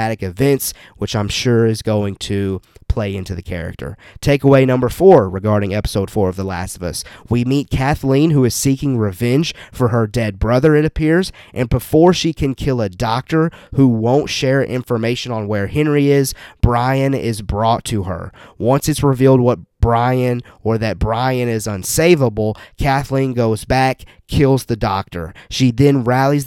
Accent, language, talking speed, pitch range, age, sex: American, English, 170 wpm, 105-135 Hz, 30-49, male